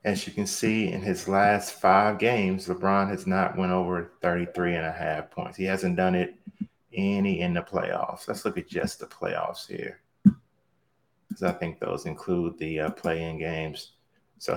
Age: 30-49